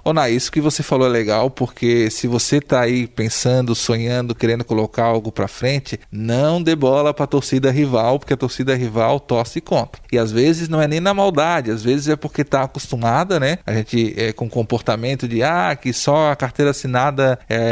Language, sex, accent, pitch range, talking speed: Portuguese, male, Brazilian, 120-165 Hz, 205 wpm